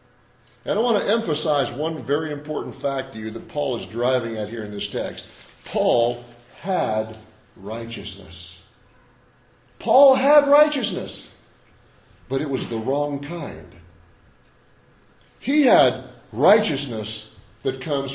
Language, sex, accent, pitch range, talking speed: English, male, American, 135-210 Hz, 120 wpm